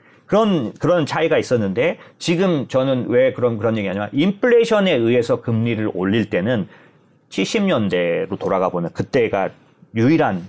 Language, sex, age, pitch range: Korean, male, 30-49, 110-175 Hz